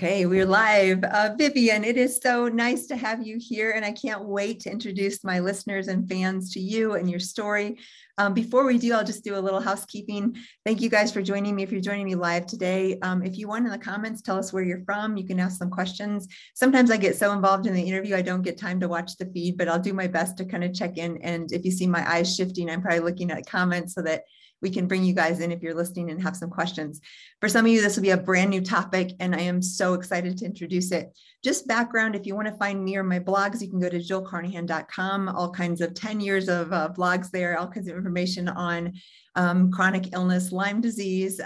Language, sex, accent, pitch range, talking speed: English, female, American, 175-205 Hz, 250 wpm